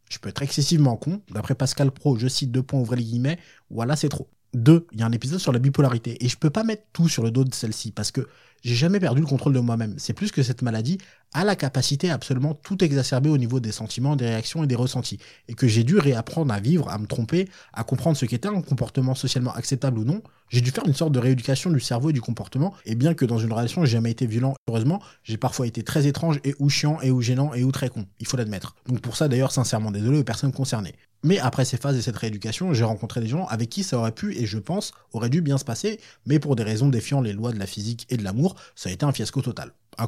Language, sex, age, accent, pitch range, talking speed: French, male, 20-39, French, 115-150 Hz, 275 wpm